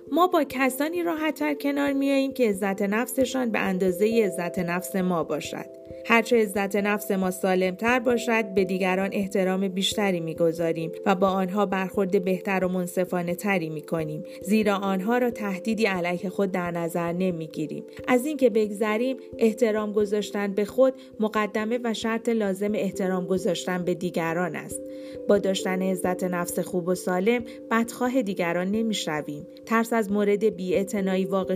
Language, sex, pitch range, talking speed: Persian, female, 180-225 Hz, 155 wpm